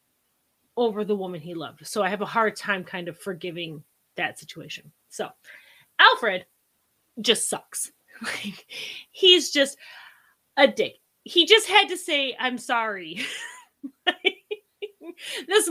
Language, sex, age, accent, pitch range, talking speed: English, female, 30-49, American, 185-285 Hz, 120 wpm